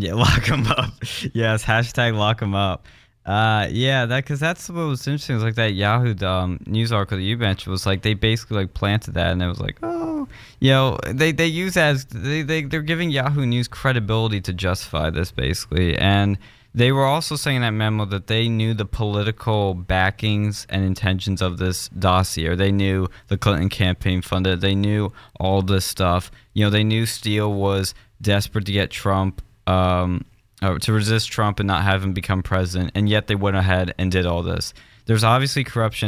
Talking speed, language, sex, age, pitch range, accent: 200 wpm, English, male, 20-39, 95-115 Hz, American